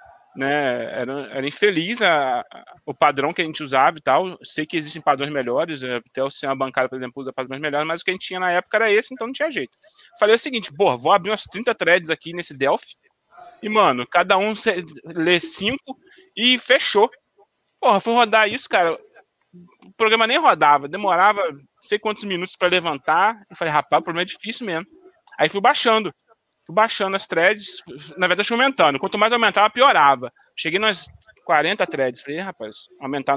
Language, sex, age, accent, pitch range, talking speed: Portuguese, male, 20-39, Brazilian, 165-235 Hz, 190 wpm